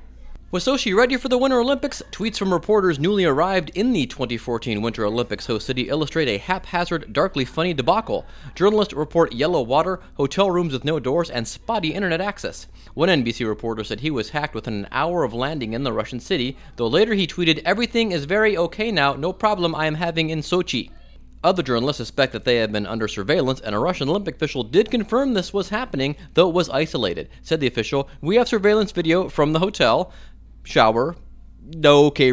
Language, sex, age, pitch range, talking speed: English, male, 30-49, 110-175 Hz, 195 wpm